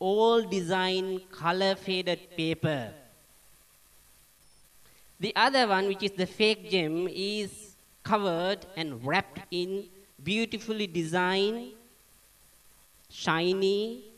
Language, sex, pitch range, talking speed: English, male, 140-200 Hz, 90 wpm